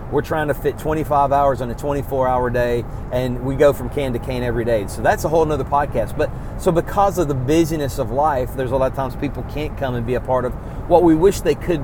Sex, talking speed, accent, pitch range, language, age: male, 265 wpm, American, 125-155 Hz, English, 40-59